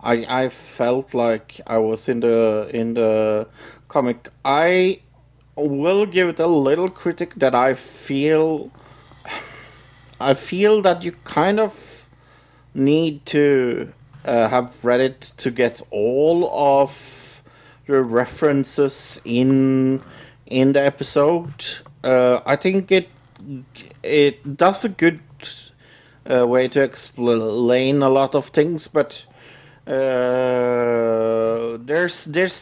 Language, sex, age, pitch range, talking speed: English, male, 50-69, 115-140 Hz, 115 wpm